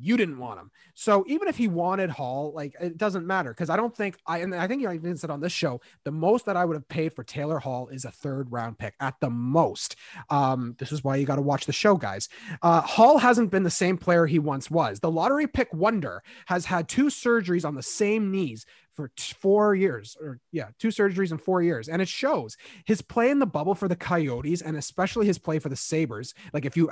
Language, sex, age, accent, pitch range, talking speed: English, male, 30-49, American, 150-195 Hz, 245 wpm